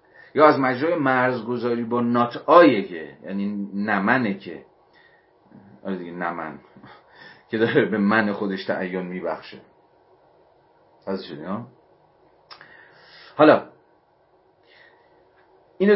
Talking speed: 90 wpm